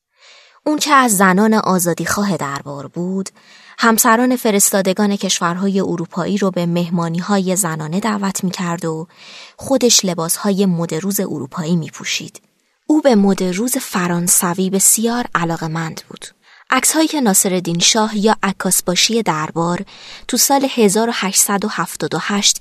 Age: 20-39